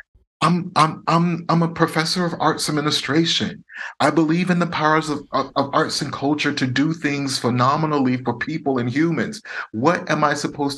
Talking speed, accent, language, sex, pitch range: 175 wpm, American, English, male, 115-145 Hz